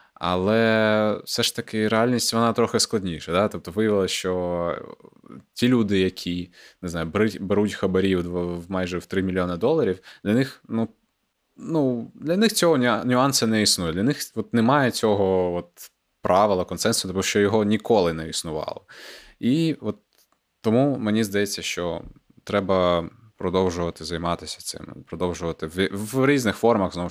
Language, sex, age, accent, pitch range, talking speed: Ukrainian, male, 20-39, native, 90-110 Hz, 140 wpm